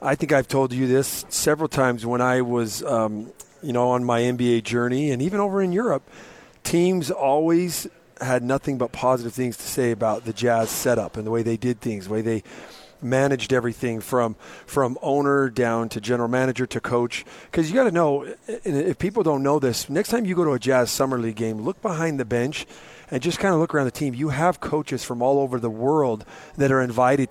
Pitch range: 120-140 Hz